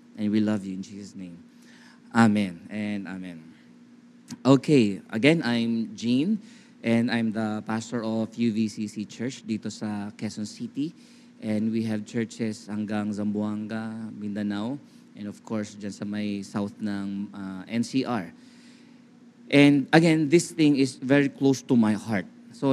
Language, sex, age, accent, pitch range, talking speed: Filipino, male, 20-39, native, 110-180 Hz, 140 wpm